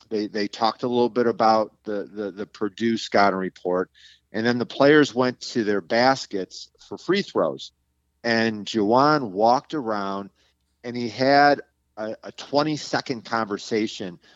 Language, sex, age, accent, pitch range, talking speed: English, male, 40-59, American, 105-120 Hz, 140 wpm